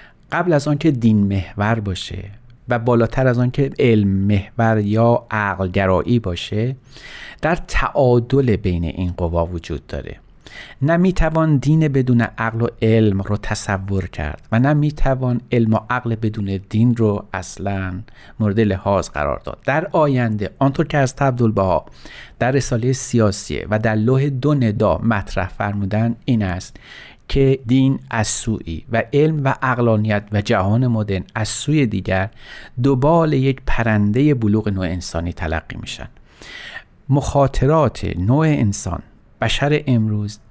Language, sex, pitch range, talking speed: Persian, male, 100-135 Hz, 135 wpm